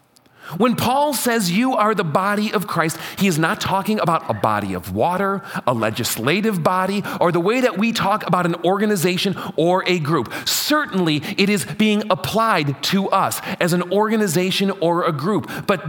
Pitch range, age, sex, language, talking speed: 145-200 Hz, 40-59, male, English, 180 wpm